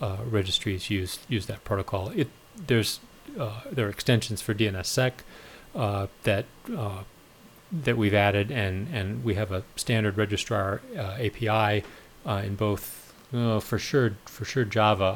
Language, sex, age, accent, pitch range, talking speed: English, male, 40-59, American, 100-115 Hz, 150 wpm